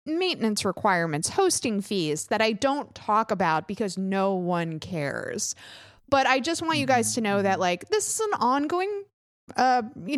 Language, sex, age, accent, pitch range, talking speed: English, female, 20-39, American, 200-280 Hz, 170 wpm